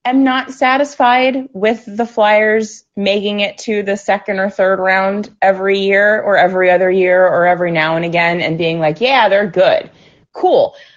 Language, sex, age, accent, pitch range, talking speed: English, female, 20-39, American, 170-230 Hz, 175 wpm